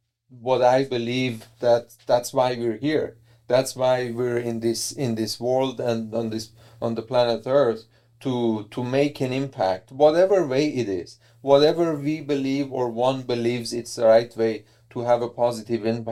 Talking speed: 170 wpm